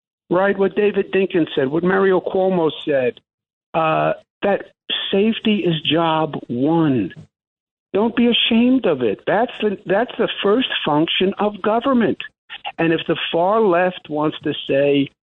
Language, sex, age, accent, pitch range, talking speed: English, male, 60-79, American, 145-195 Hz, 140 wpm